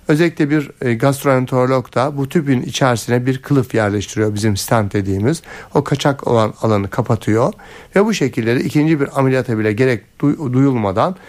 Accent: native